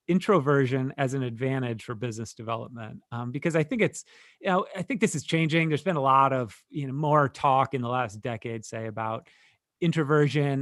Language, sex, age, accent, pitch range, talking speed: English, male, 30-49, American, 120-150 Hz, 200 wpm